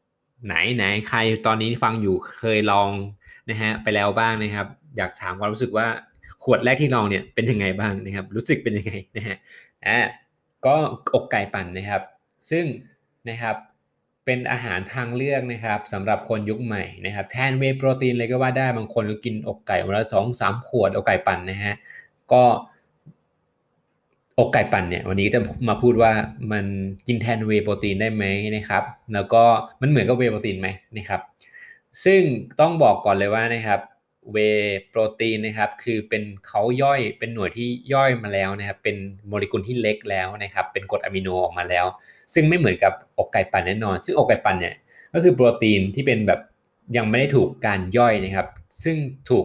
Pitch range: 100-120 Hz